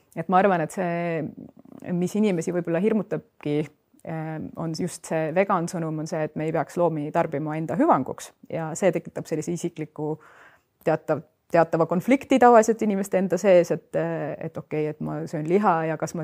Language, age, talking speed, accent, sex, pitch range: English, 30-49, 170 wpm, Finnish, female, 155-175 Hz